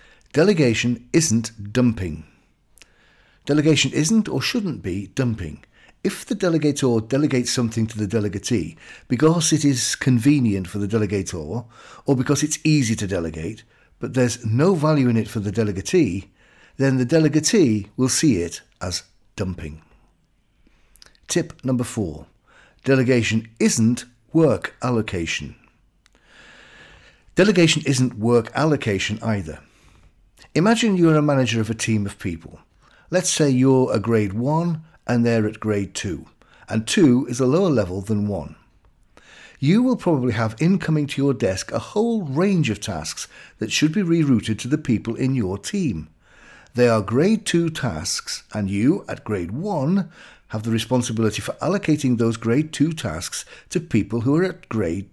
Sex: male